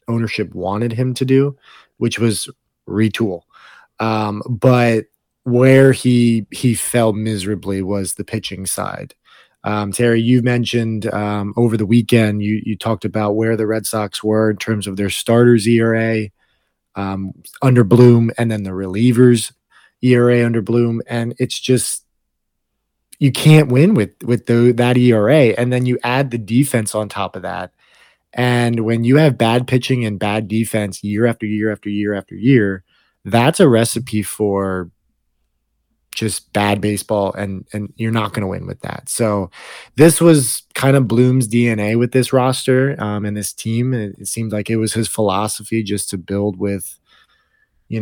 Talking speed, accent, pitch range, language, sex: 165 wpm, American, 105-125 Hz, English, male